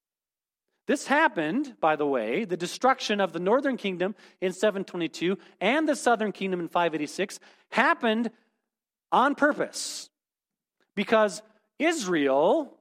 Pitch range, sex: 175-240 Hz, male